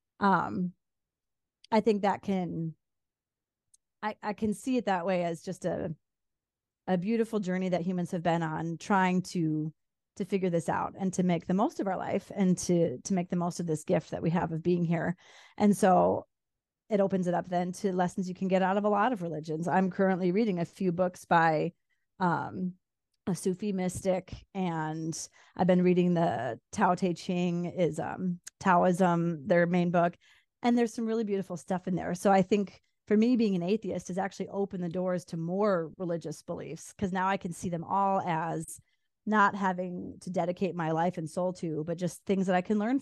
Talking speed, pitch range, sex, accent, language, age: 200 wpm, 170-195 Hz, female, American, English, 30-49